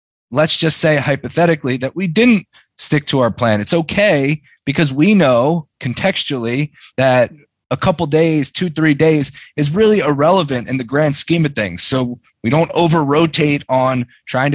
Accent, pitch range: American, 115-150 Hz